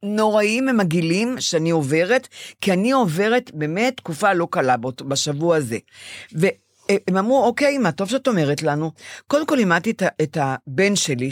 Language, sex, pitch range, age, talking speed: Hebrew, female, 145-200 Hz, 50-69, 150 wpm